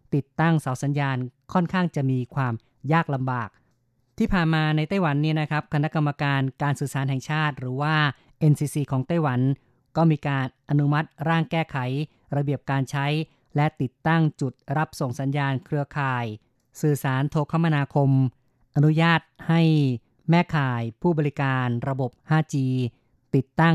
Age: 30-49